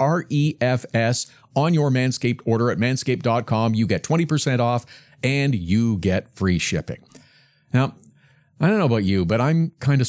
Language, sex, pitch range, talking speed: English, male, 115-150 Hz, 155 wpm